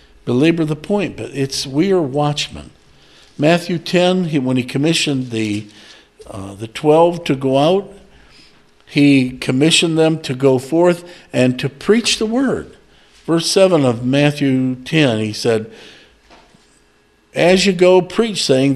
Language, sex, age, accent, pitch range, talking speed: English, male, 60-79, American, 135-175 Hz, 140 wpm